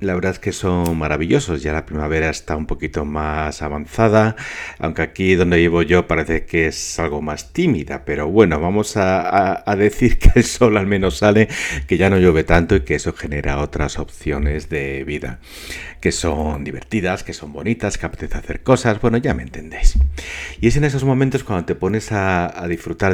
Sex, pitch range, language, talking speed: male, 75-100 Hz, Spanish, 195 wpm